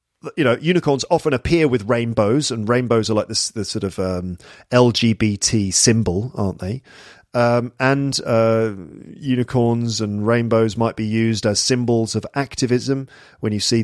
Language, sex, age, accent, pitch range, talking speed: English, male, 40-59, British, 110-140 Hz, 155 wpm